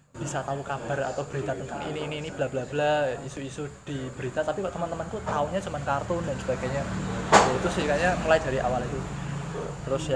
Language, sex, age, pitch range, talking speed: Malay, male, 20-39, 130-150 Hz, 175 wpm